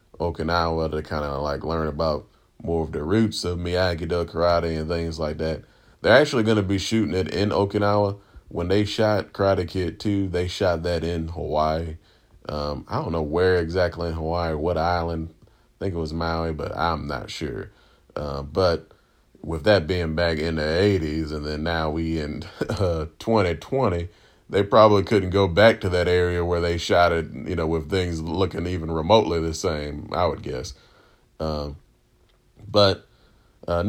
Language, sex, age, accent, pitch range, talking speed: English, male, 30-49, American, 80-95 Hz, 180 wpm